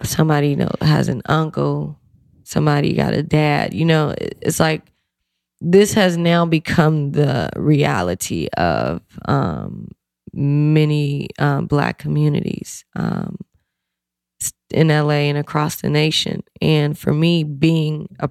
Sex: female